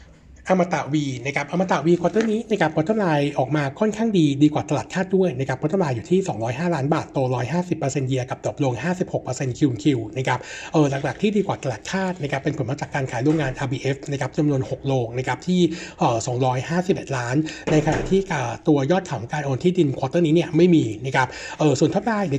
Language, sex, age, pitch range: Thai, male, 60-79, 130-170 Hz